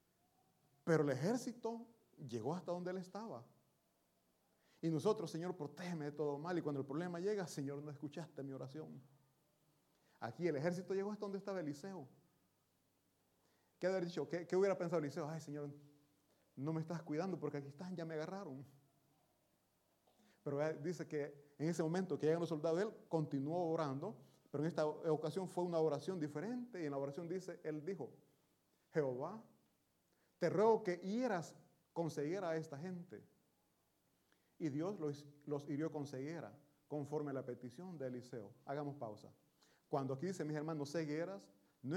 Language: Italian